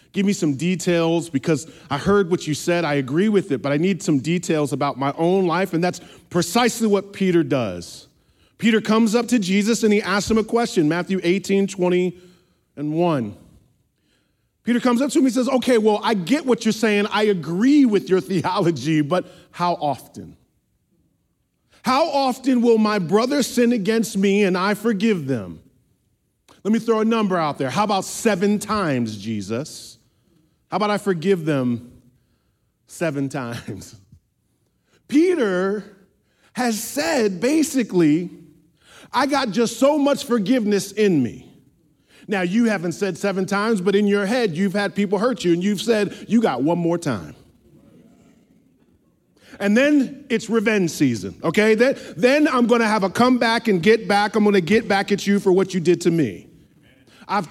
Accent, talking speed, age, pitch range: American, 170 wpm, 40-59, 165-225 Hz